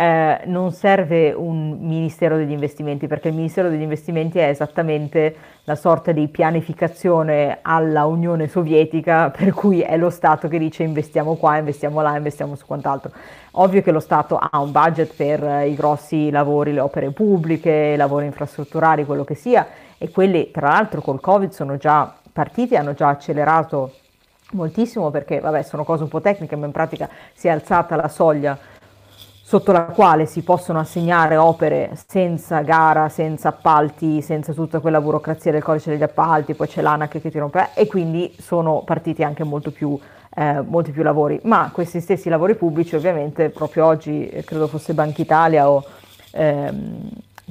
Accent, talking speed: native, 170 wpm